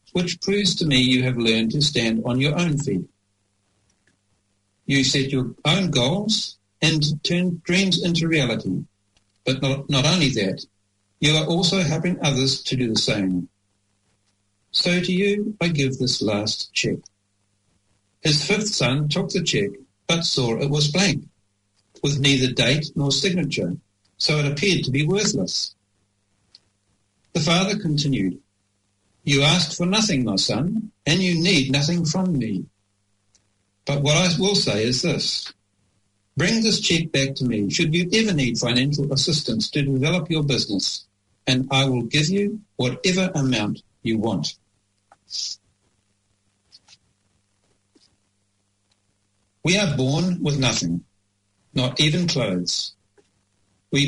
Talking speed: 135 wpm